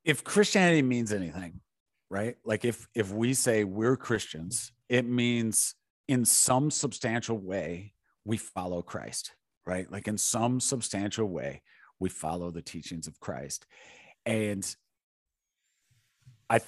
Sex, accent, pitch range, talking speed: male, American, 100-120 Hz, 125 wpm